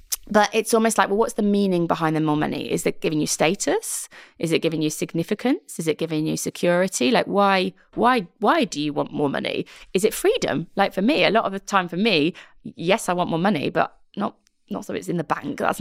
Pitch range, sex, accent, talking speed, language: 160-205 Hz, female, British, 240 wpm, English